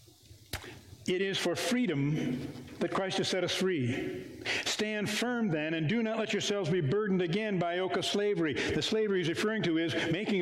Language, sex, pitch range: English, male, 155-195 Hz